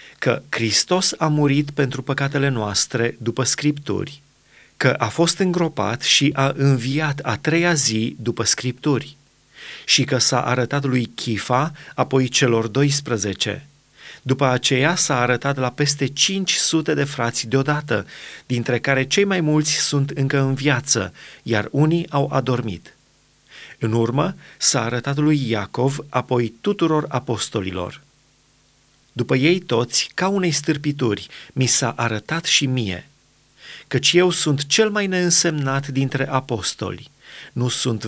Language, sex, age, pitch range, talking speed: Romanian, male, 30-49, 125-150 Hz, 130 wpm